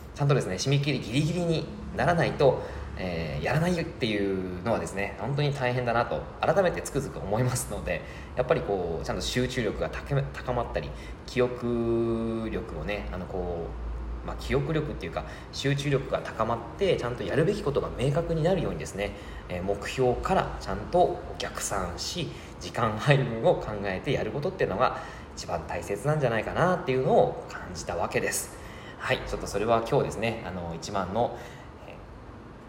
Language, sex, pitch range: Japanese, male, 90-125 Hz